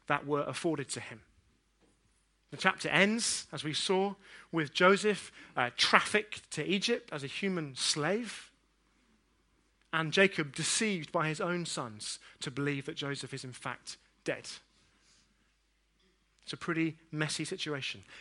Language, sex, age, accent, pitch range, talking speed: English, male, 30-49, British, 150-210 Hz, 135 wpm